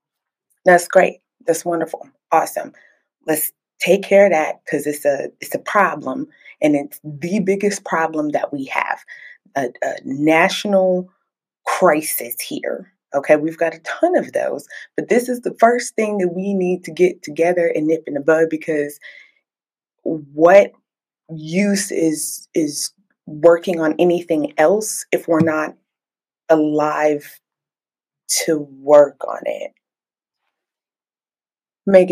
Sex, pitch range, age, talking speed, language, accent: female, 160-215 Hz, 20-39, 135 wpm, English, American